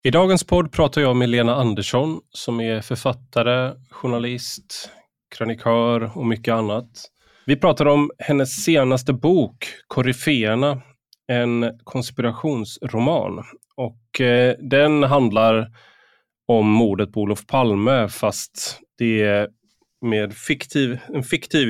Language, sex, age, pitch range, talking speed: Swedish, male, 20-39, 110-140 Hz, 115 wpm